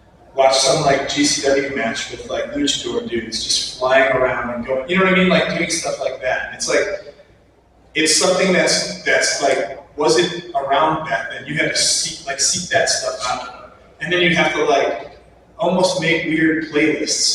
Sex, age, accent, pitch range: male, 30-49, American, 145-200 Hz